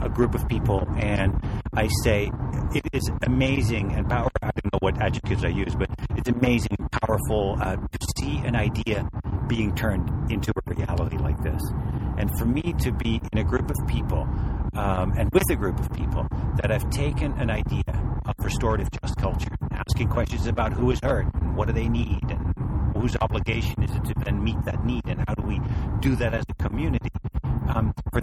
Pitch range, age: 90-120 Hz, 60-79